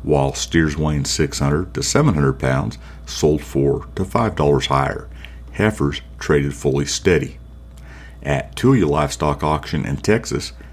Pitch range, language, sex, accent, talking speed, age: 70-80 Hz, English, male, American, 125 wpm, 50-69